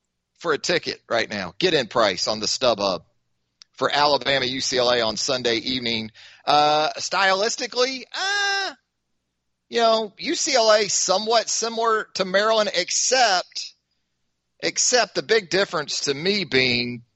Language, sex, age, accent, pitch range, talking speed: English, male, 30-49, American, 125-175 Hz, 125 wpm